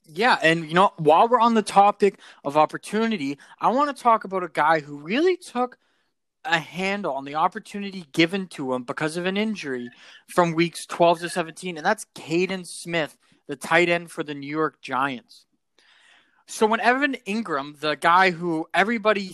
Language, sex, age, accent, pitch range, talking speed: English, male, 20-39, American, 160-220 Hz, 180 wpm